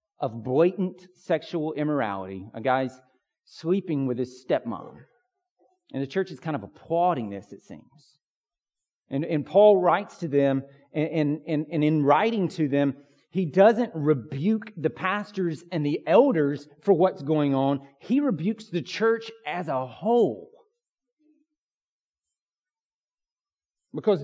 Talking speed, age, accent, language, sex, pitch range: 130 wpm, 40-59, American, English, male, 150-210 Hz